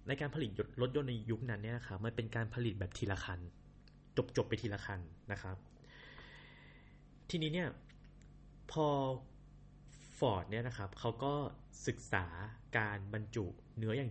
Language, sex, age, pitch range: Thai, male, 20-39, 105-140 Hz